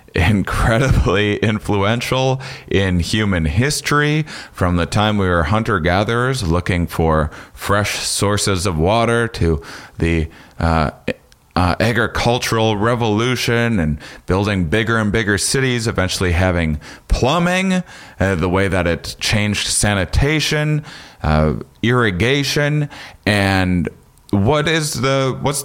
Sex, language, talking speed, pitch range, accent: male, English, 110 wpm, 90-120 Hz, American